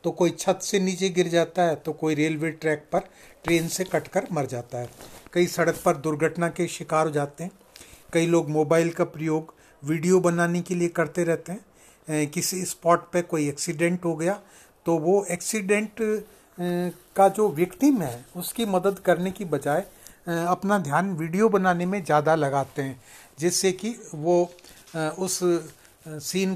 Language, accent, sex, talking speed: Hindi, native, male, 165 wpm